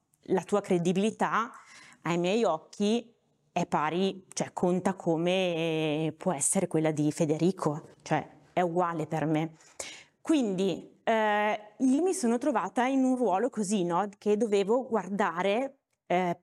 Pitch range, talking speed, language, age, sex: 170-215 Hz, 130 wpm, Italian, 20-39, female